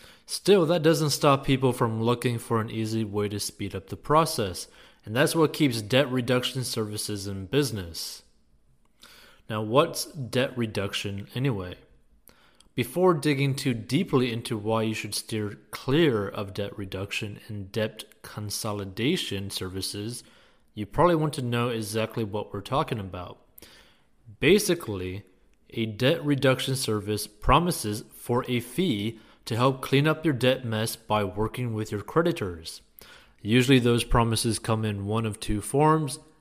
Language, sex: English, male